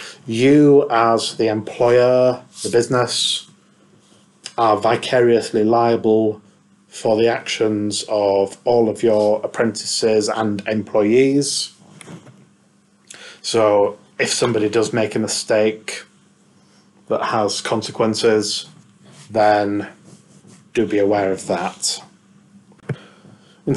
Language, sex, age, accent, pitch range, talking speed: English, male, 30-49, British, 105-125 Hz, 90 wpm